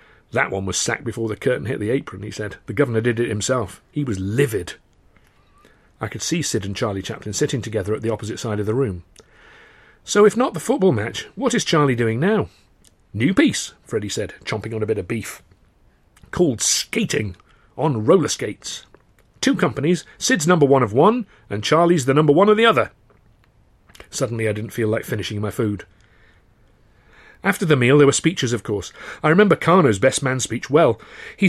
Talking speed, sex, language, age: 190 wpm, male, English, 40-59